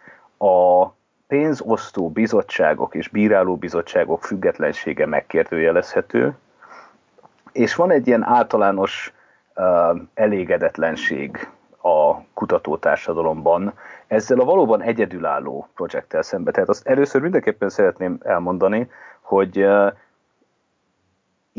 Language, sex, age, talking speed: Hungarian, male, 30-49, 85 wpm